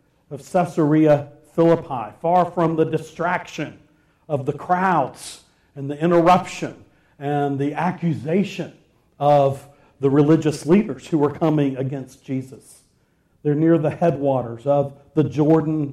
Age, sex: 50-69, male